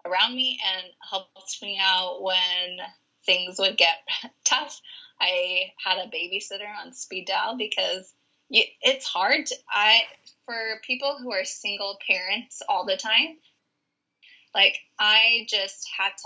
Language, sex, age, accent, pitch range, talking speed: English, female, 20-39, American, 195-275 Hz, 130 wpm